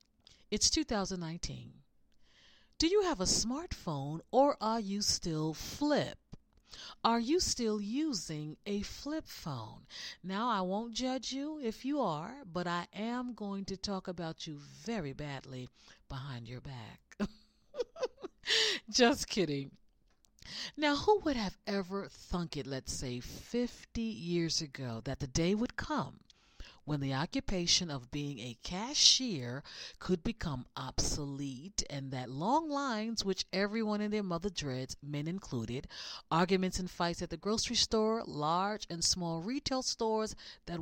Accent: American